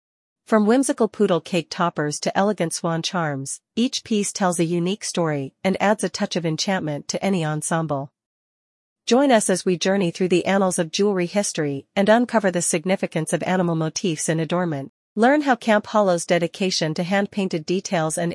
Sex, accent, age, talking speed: female, American, 40-59, 175 wpm